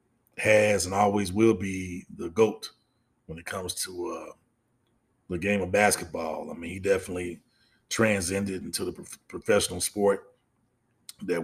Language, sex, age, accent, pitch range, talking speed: English, male, 30-49, American, 90-110 Hz, 135 wpm